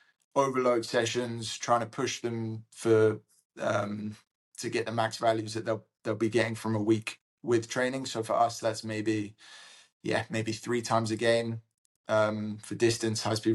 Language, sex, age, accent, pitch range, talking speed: English, male, 20-39, British, 110-120 Hz, 175 wpm